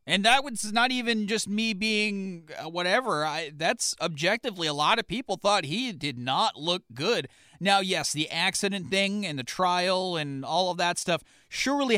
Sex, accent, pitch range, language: male, American, 150-200 Hz, English